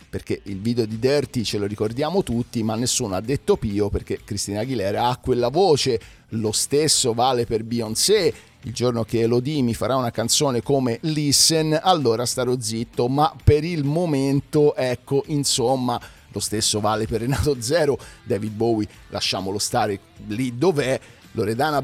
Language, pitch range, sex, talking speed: Italian, 110-140 Hz, male, 155 wpm